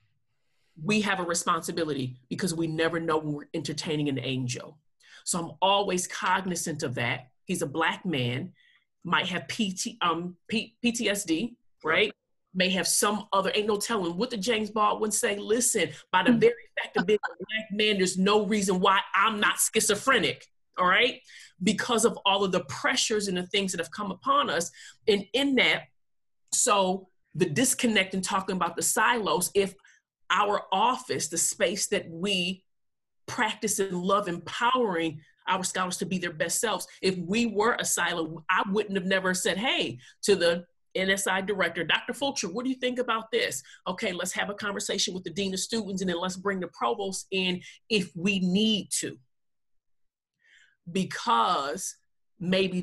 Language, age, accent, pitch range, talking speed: English, 40-59, American, 170-210 Hz, 170 wpm